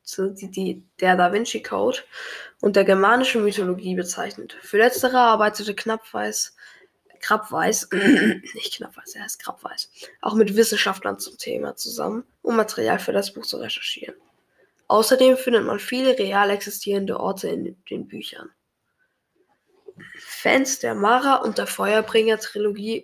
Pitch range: 200-260 Hz